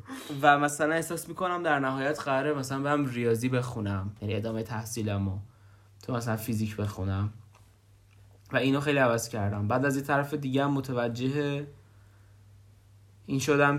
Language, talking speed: Persian, 140 wpm